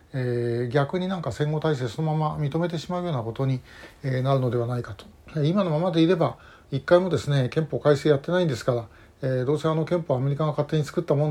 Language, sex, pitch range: Japanese, male, 130-175 Hz